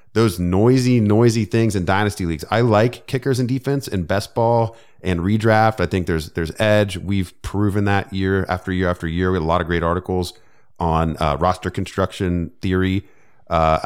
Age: 30-49